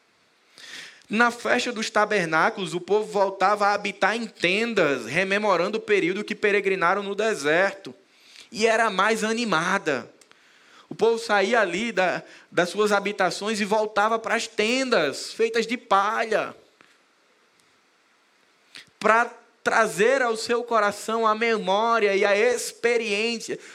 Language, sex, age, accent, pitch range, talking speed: Portuguese, male, 20-39, Brazilian, 185-230 Hz, 120 wpm